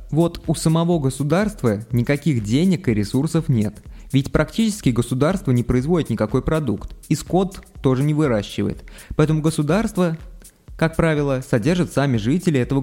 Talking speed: 135 wpm